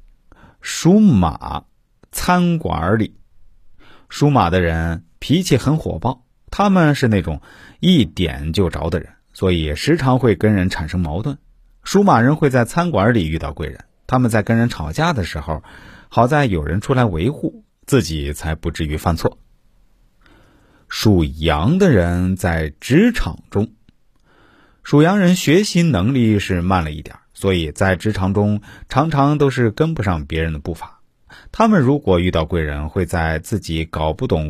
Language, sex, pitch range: Chinese, male, 85-140 Hz